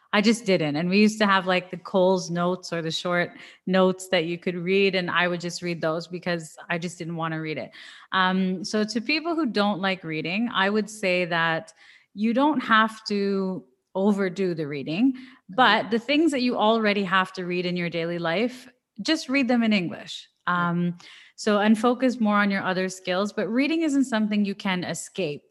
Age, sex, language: 30-49, female, English